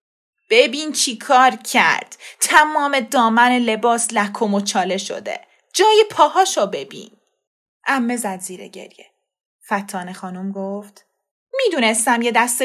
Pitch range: 210-330 Hz